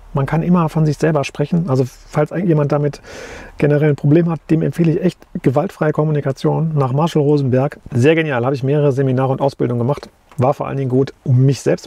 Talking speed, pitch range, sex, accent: 210 wpm, 125-150 Hz, male, German